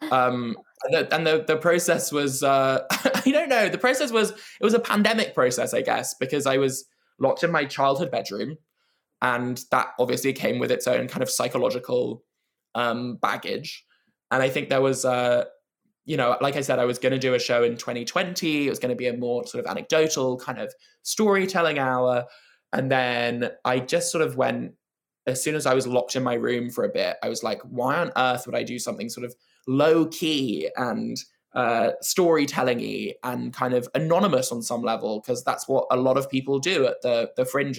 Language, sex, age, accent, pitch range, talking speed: English, male, 10-29, British, 125-155 Hz, 205 wpm